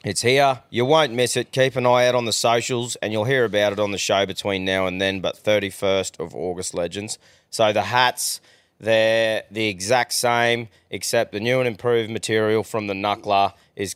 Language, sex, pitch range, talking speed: English, male, 95-120 Hz, 200 wpm